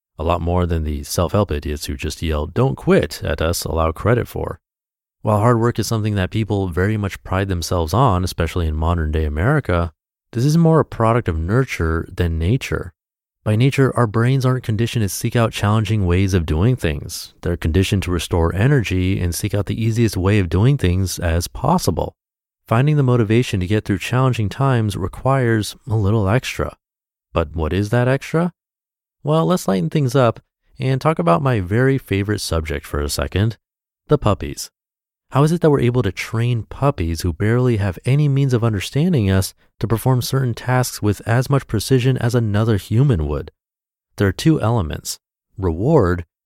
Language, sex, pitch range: English, male, 90-120 Hz